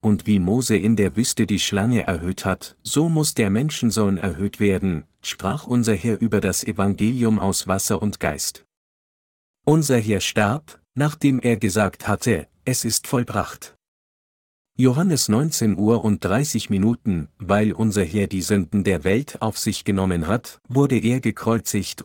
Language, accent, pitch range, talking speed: German, German, 100-120 Hz, 150 wpm